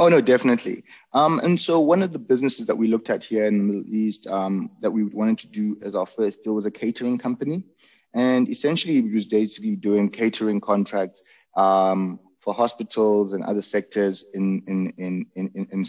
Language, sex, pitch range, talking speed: English, male, 100-115 Hz, 190 wpm